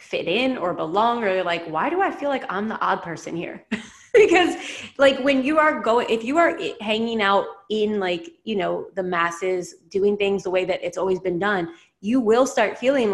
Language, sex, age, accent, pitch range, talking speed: English, female, 20-39, American, 185-240 Hz, 220 wpm